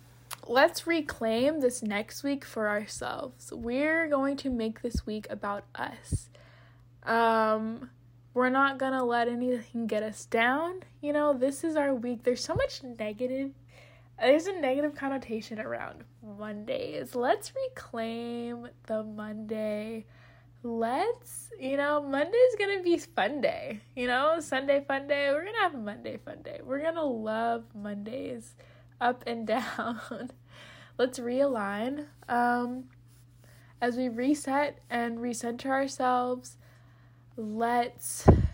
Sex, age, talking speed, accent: female, 10-29, 130 wpm, American